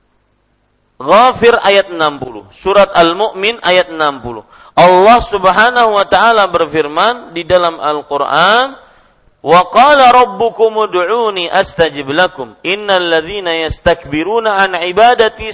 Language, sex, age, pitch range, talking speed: Malay, male, 40-59, 165-235 Hz, 95 wpm